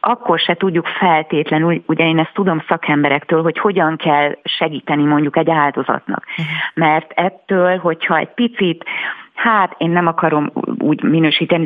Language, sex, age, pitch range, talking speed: Hungarian, female, 30-49, 150-175 Hz, 140 wpm